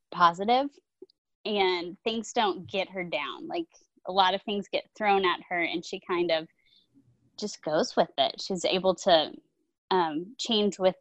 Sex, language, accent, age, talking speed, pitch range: female, English, American, 20-39, 165 wpm, 180-255 Hz